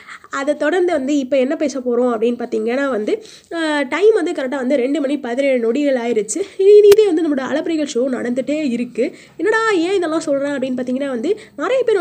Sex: female